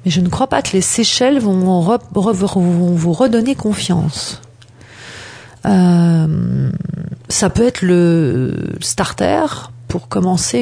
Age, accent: 40-59, French